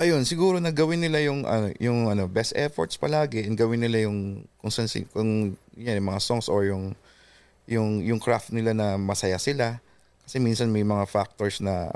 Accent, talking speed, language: Filipino, 185 wpm, English